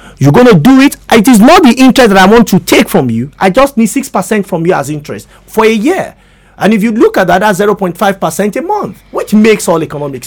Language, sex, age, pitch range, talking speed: English, male, 40-59, 175-240 Hz, 245 wpm